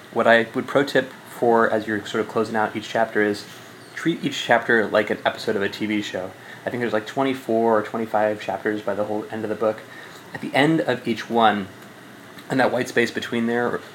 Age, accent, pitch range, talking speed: 20-39, American, 105-125 Hz, 220 wpm